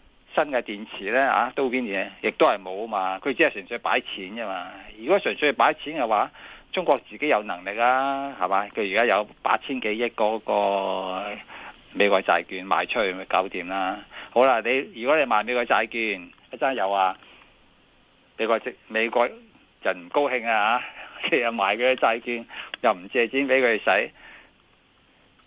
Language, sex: Chinese, male